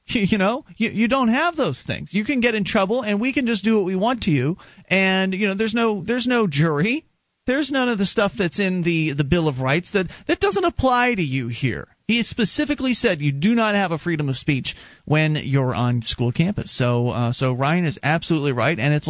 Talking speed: 235 wpm